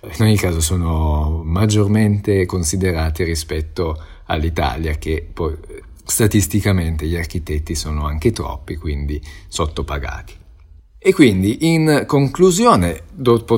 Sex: male